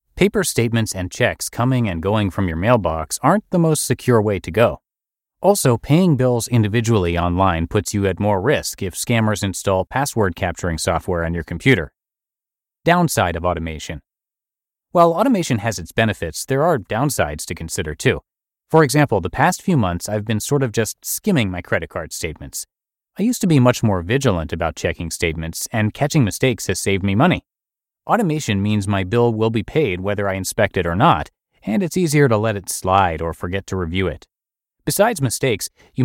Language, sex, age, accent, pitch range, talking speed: English, male, 30-49, American, 95-130 Hz, 185 wpm